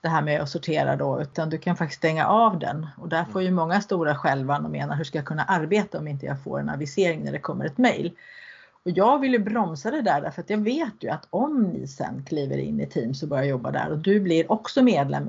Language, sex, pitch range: Swedish, female, 155-220 Hz